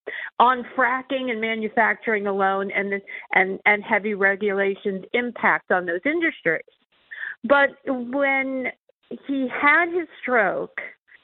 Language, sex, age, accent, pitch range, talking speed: English, female, 50-69, American, 195-255 Hz, 110 wpm